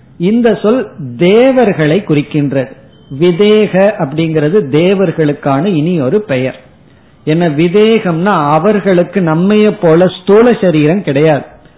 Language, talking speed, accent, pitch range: Tamil, 90 wpm, native, 155-200 Hz